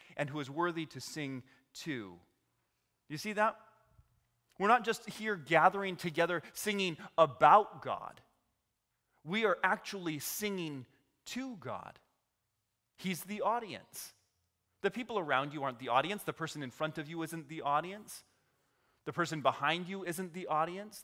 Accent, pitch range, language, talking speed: American, 140-195 Hz, English, 145 wpm